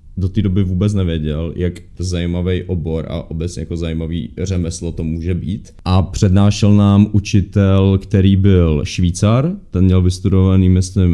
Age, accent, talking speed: 30-49, native, 145 wpm